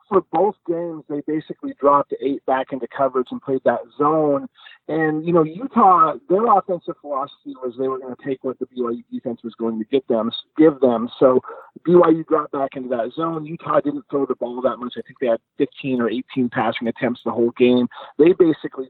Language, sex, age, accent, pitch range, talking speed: English, male, 40-59, American, 125-145 Hz, 210 wpm